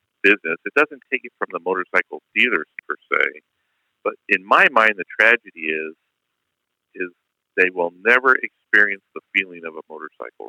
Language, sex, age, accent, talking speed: English, male, 40-59, American, 160 wpm